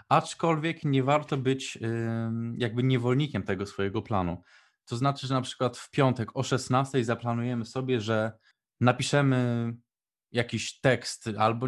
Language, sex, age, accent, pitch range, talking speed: Polish, male, 20-39, native, 115-145 Hz, 130 wpm